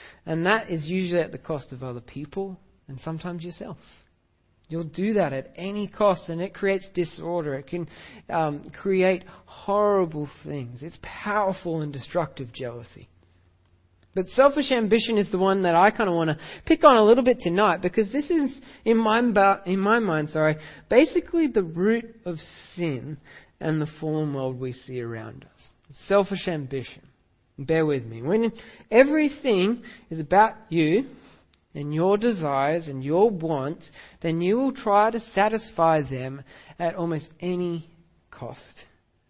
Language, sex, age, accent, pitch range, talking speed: English, male, 40-59, Australian, 140-200 Hz, 155 wpm